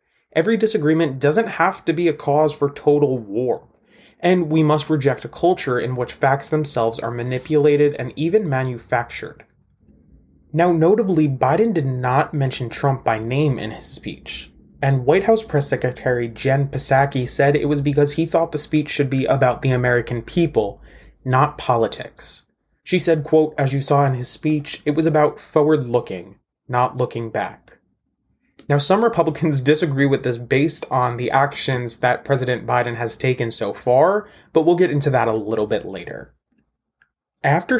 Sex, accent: male, American